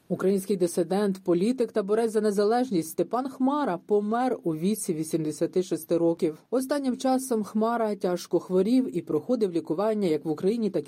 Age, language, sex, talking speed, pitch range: 40-59, Ukrainian, female, 145 wpm, 175-240 Hz